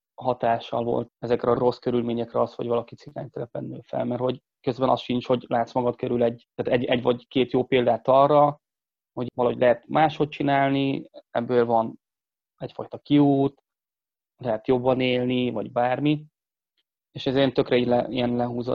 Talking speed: 155 wpm